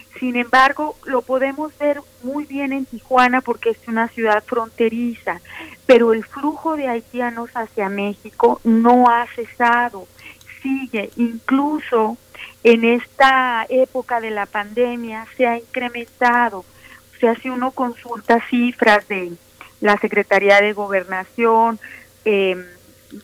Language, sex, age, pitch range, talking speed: Spanish, female, 40-59, 210-250 Hz, 120 wpm